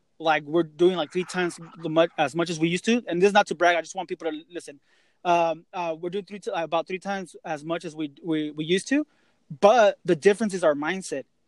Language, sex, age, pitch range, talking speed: English, male, 20-39, 170-205 Hz, 260 wpm